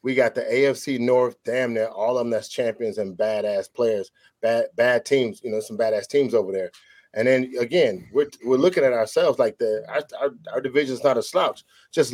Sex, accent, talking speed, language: male, American, 215 wpm, English